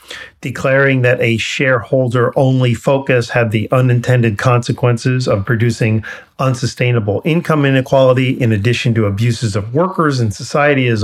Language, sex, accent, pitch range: English, male, American, 120-140 Hz